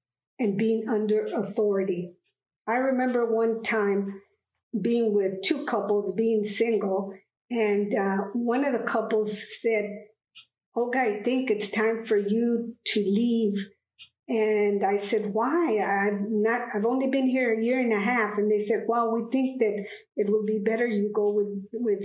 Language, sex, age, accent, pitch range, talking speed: English, female, 50-69, American, 200-240 Hz, 165 wpm